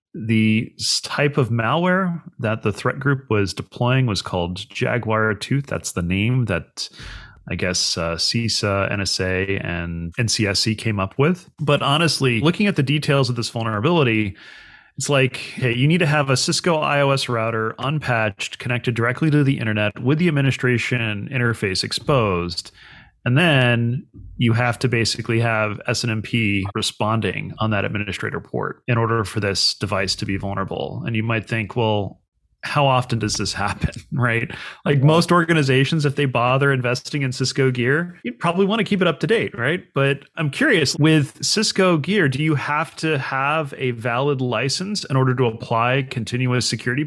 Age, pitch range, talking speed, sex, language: 30-49, 110-145 Hz, 165 wpm, male, English